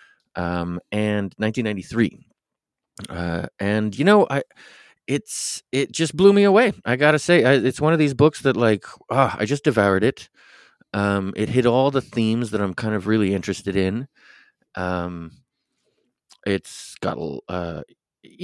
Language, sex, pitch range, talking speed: English, male, 90-120 Hz, 155 wpm